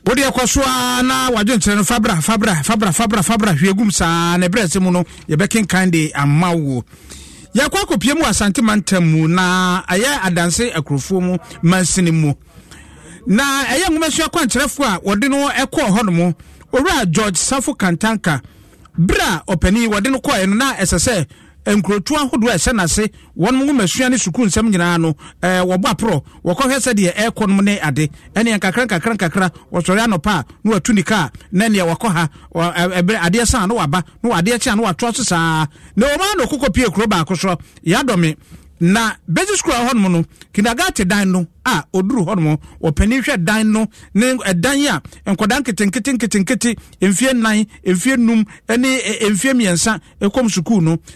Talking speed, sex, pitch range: 150 wpm, male, 175-240 Hz